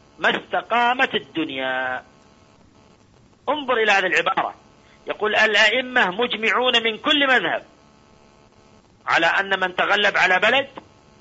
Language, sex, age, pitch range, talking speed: Arabic, male, 50-69, 155-235 Hz, 100 wpm